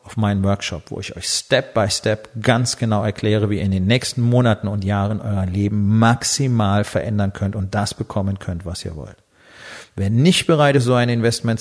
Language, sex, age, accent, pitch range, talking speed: German, male, 40-59, German, 105-135 Hz, 190 wpm